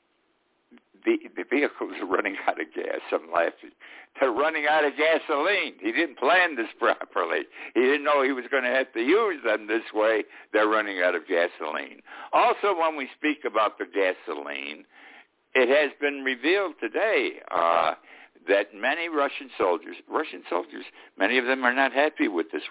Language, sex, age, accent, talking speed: English, male, 60-79, American, 170 wpm